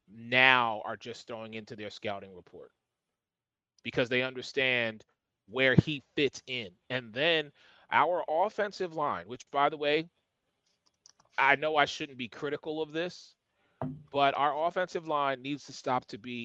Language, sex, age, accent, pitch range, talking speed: English, male, 30-49, American, 120-155 Hz, 150 wpm